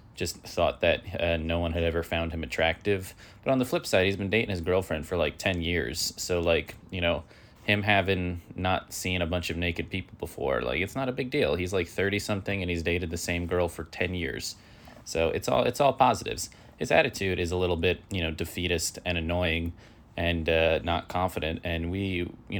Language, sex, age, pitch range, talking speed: English, male, 20-39, 85-100 Hz, 220 wpm